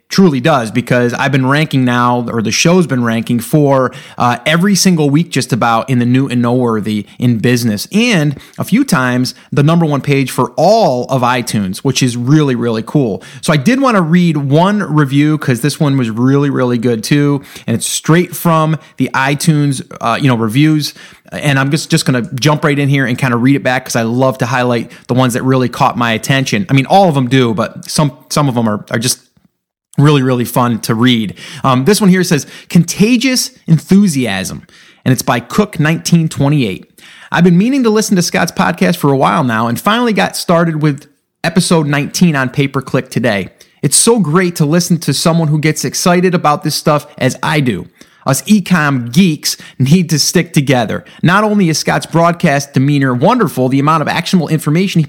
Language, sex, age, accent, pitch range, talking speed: English, male, 30-49, American, 125-170 Hz, 200 wpm